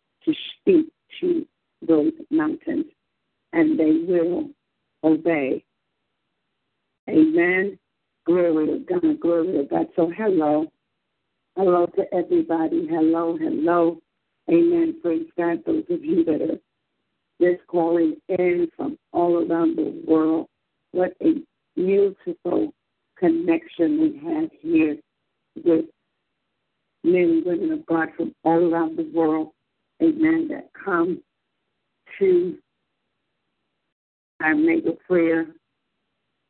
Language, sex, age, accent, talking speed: English, female, 60-79, American, 105 wpm